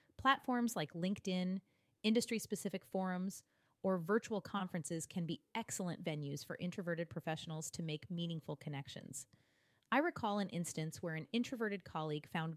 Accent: American